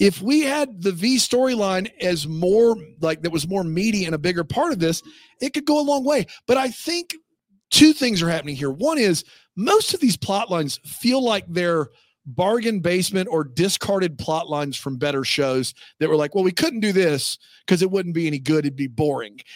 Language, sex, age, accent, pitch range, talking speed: English, male, 40-59, American, 155-225 Hz, 210 wpm